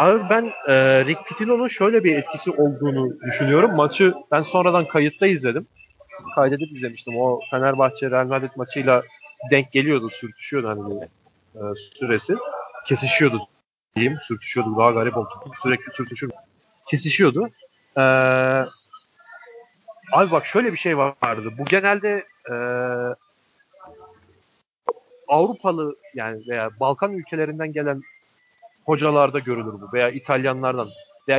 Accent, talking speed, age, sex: native, 110 wpm, 40-59, male